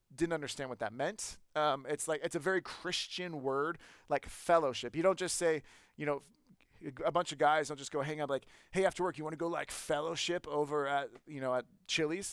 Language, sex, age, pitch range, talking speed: English, male, 30-49, 145-185 Hz, 220 wpm